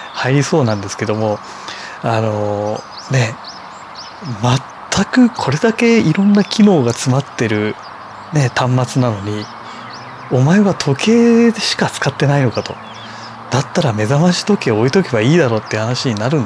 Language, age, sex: Japanese, 30-49, male